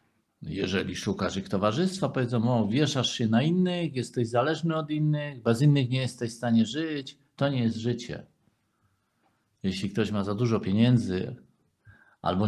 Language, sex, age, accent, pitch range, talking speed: Polish, male, 50-69, native, 105-155 Hz, 155 wpm